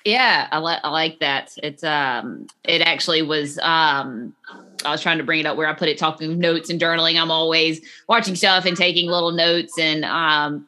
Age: 20-39